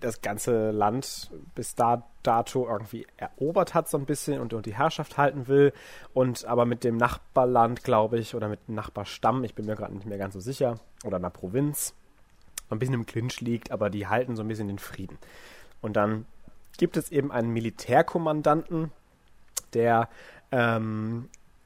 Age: 30-49